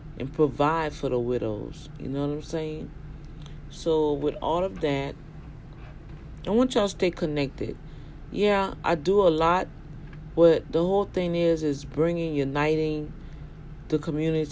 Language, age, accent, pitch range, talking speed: English, 40-59, American, 145-170 Hz, 150 wpm